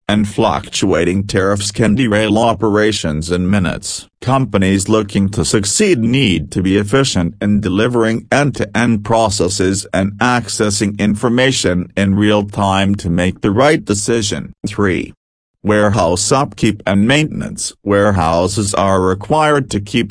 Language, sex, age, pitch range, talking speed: English, male, 50-69, 100-115 Hz, 120 wpm